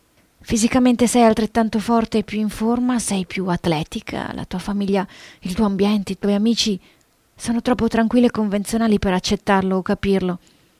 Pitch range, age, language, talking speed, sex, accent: 195-235 Hz, 30-49, Italian, 160 wpm, female, native